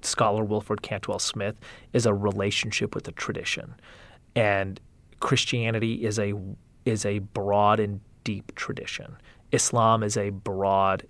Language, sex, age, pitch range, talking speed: English, male, 30-49, 100-120 Hz, 130 wpm